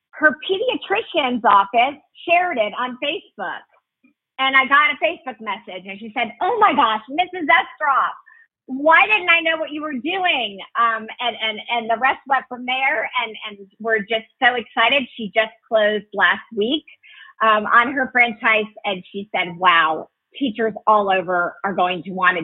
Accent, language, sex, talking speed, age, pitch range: American, English, female, 175 wpm, 50-69, 220-295 Hz